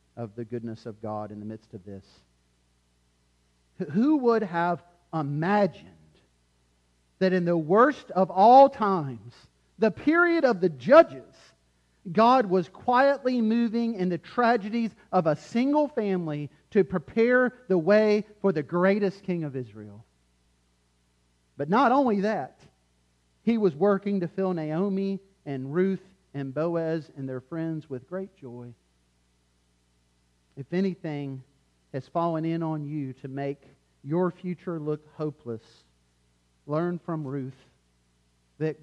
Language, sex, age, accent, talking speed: English, male, 40-59, American, 130 wpm